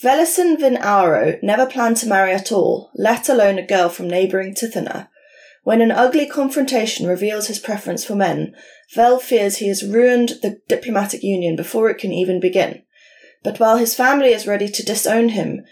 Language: English